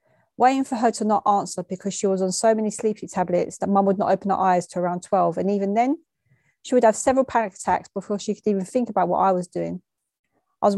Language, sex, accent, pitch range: English, female, British, 185-230 Hz